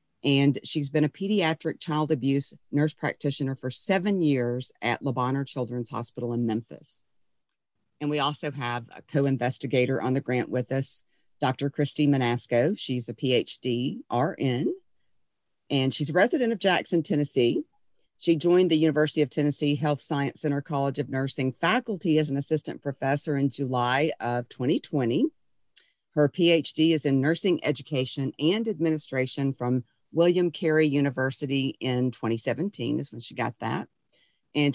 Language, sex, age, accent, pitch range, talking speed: English, female, 50-69, American, 125-155 Hz, 145 wpm